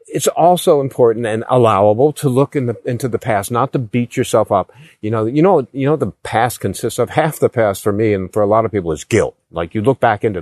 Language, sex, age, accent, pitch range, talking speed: English, male, 50-69, American, 95-130 Hz, 260 wpm